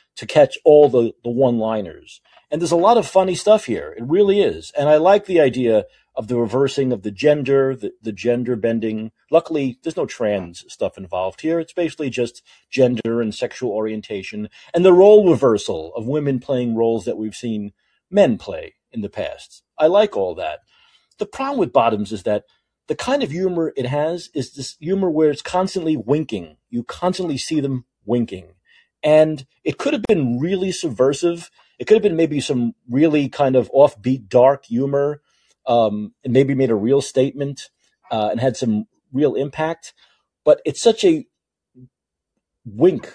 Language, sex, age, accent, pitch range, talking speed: English, male, 40-59, American, 120-170 Hz, 175 wpm